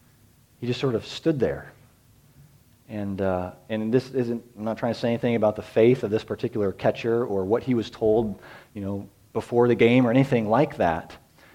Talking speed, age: 190 wpm, 40-59